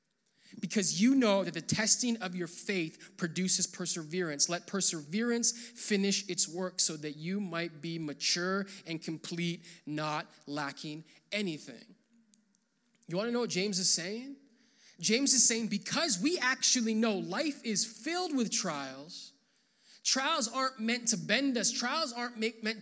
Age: 20-39